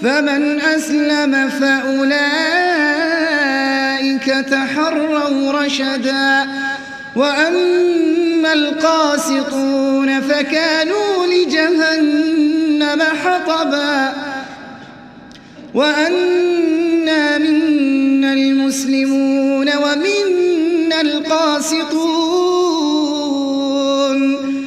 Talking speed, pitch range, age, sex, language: 35 wpm, 270-320 Hz, 30-49, male, Arabic